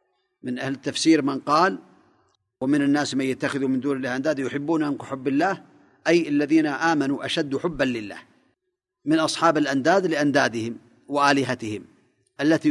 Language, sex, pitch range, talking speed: Arabic, male, 135-180 Hz, 130 wpm